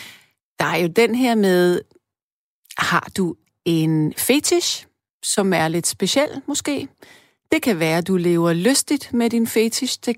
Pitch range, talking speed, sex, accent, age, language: 180-250 Hz, 155 wpm, female, native, 40-59, Danish